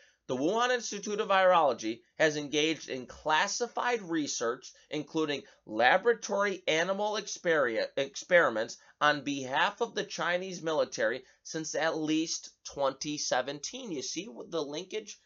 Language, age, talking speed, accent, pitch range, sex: English, 30-49, 110 wpm, American, 145-220 Hz, male